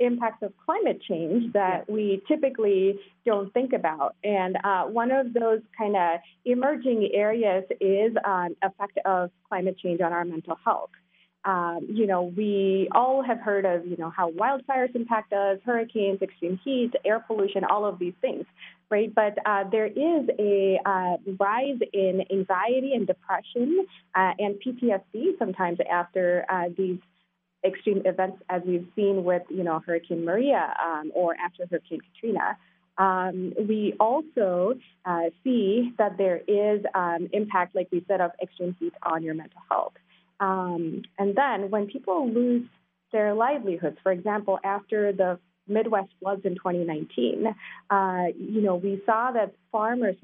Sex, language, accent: female, English, American